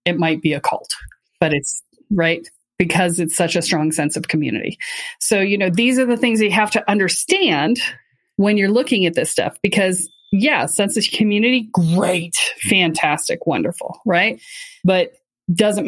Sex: female